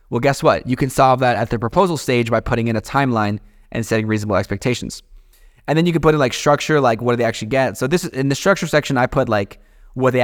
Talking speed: 270 wpm